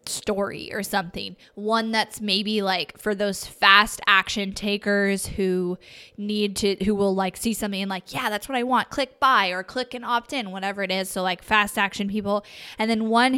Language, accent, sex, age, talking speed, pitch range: English, American, female, 10-29, 200 wpm, 190-230 Hz